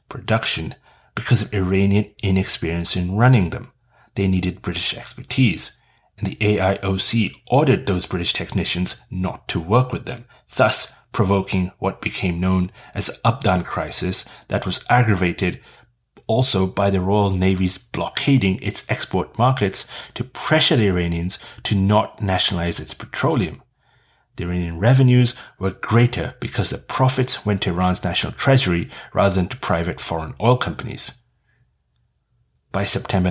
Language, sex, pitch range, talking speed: English, male, 90-115 Hz, 135 wpm